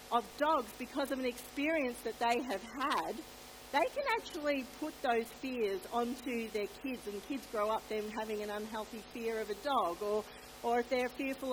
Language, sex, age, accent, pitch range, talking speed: English, female, 50-69, Australian, 220-280 Hz, 185 wpm